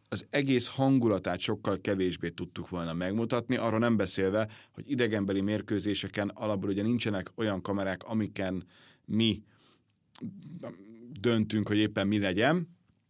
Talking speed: 120 wpm